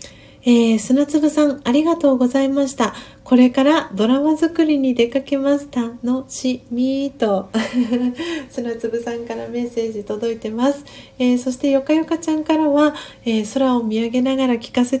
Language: Japanese